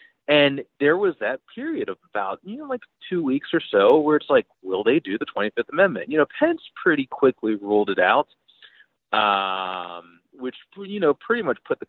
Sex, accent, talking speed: male, American, 195 wpm